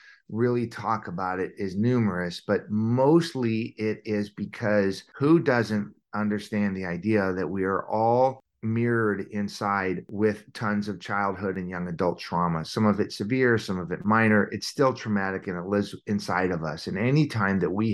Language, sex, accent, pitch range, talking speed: English, male, American, 95-110 Hz, 170 wpm